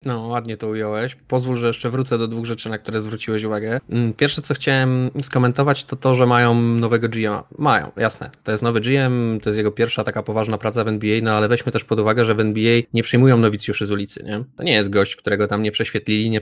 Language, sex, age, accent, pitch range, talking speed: Polish, male, 20-39, native, 110-125 Hz, 235 wpm